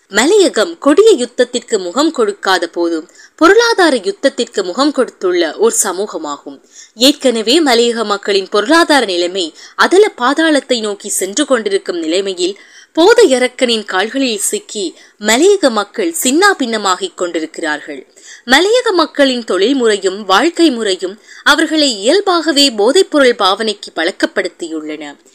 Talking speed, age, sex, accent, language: 95 wpm, 20-39, female, native, Tamil